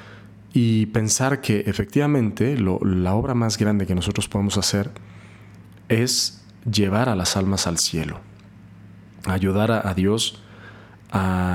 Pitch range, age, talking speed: 95-110 Hz, 40-59, 130 wpm